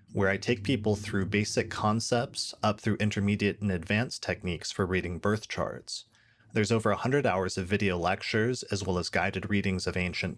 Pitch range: 95-115 Hz